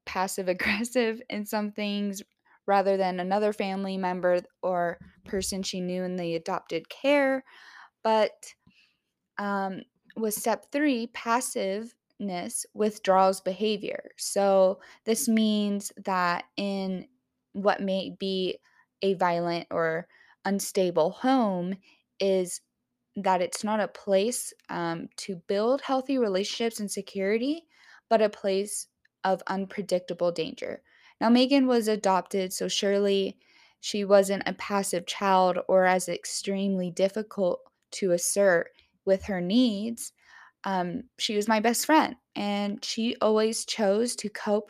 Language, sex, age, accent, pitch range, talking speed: English, female, 10-29, American, 190-230 Hz, 120 wpm